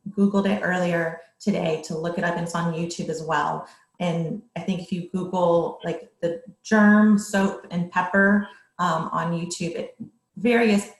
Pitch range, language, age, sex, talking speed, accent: 175-220 Hz, English, 30-49, female, 170 wpm, American